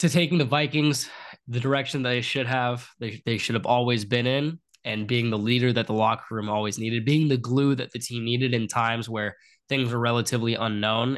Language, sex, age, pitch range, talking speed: English, male, 10-29, 115-130 Hz, 220 wpm